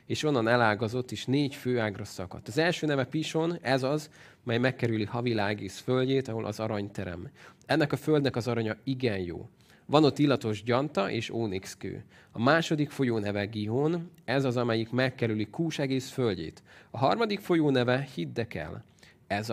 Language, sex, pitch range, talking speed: Hungarian, male, 115-145 Hz, 155 wpm